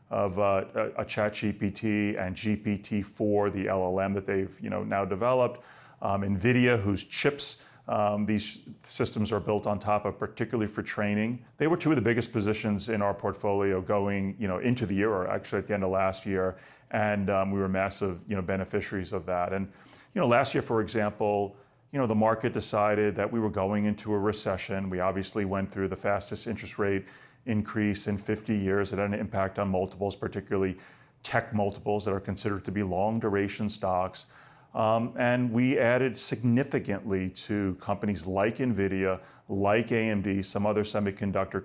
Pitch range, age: 100-110 Hz, 30-49